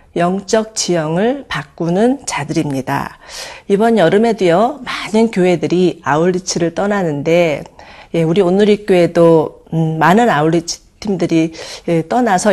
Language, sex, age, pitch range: Korean, female, 40-59, 160-210 Hz